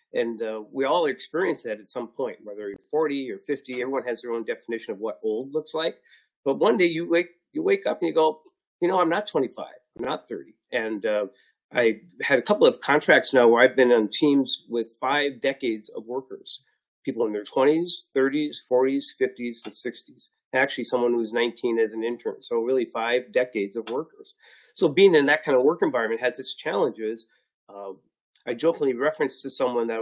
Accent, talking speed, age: American, 205 wpm, 40-59